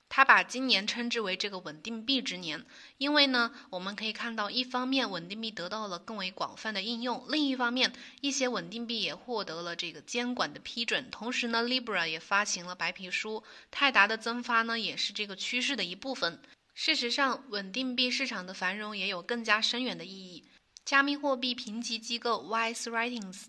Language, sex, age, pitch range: Chinese, female, 20-39, 195-245 Hz